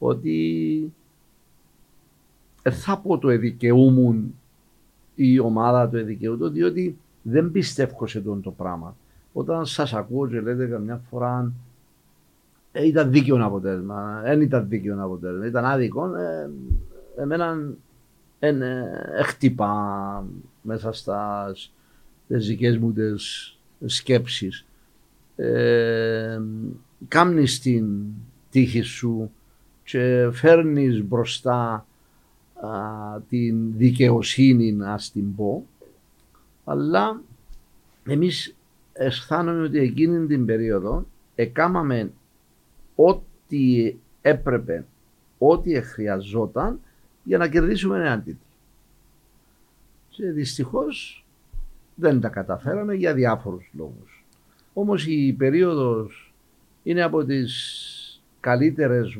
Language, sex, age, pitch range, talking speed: Greek, male, 50-69, 105-140 Hz, 85 wpm